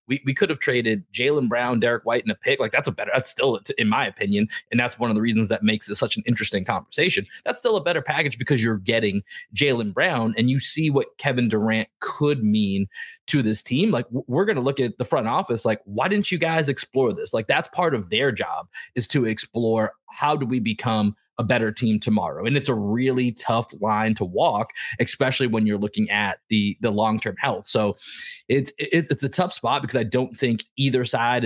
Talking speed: 225 wpm